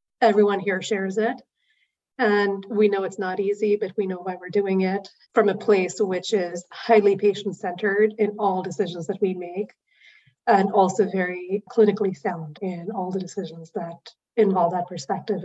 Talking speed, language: 165 wpm, English